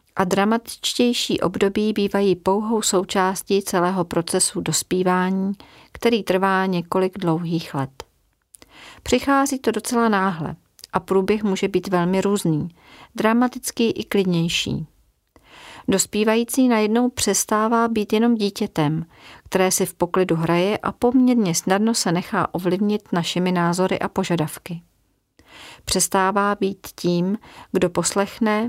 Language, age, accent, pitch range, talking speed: Czech, 40-59, native, 175-210 Hz, 110 wpm